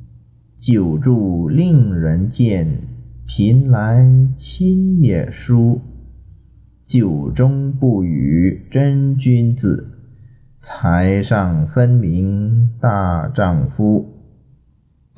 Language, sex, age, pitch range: Chinese, male, 20-39, 90-125 Hz